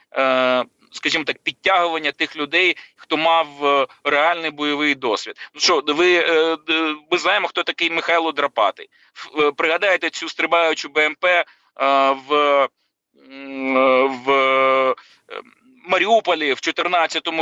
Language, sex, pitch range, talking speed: Ukrainian, male, 140-170 Hz, 95 wpm